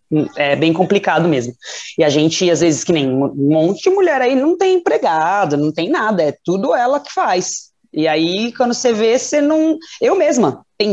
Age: 20-39